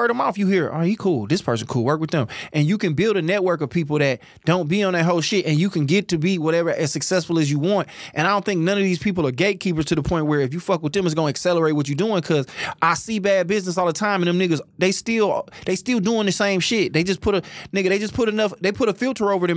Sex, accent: male, American